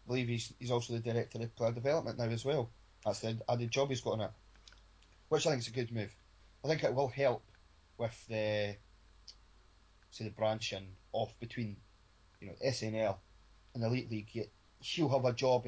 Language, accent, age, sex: English, British, 20-39, male